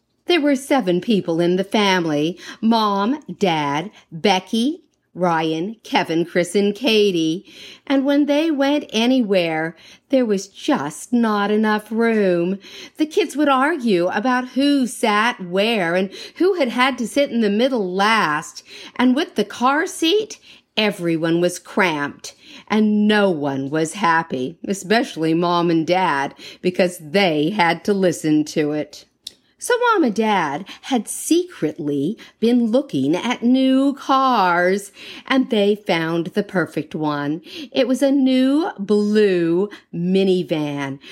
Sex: female